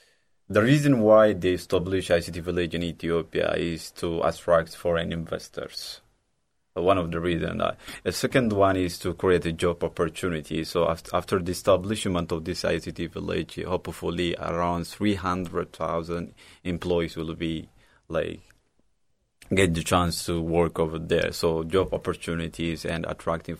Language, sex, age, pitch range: Japanese, male, 30-49, 85-100 Hz